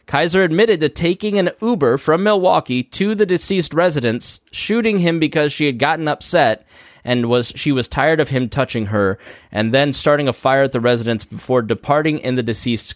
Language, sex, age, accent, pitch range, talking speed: English, male, 20-39, American, 110-155 Hz, 190 wpm